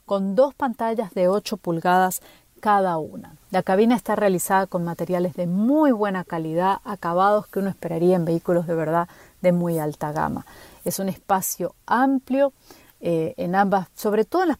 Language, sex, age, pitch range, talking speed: Spanish, female, 40-59, 170-220 Hz, 170 wpm